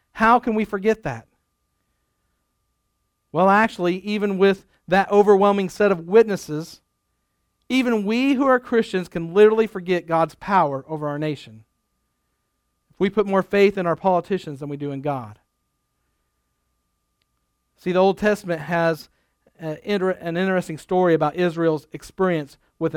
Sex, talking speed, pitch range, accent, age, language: male, 140 wpm, 150-195 Hz, American, 50-69, English